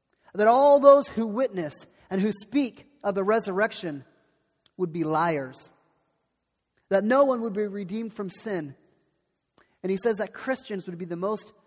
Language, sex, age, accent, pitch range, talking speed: English, male, 30-49, American, 155-205 Hz, 160 wpm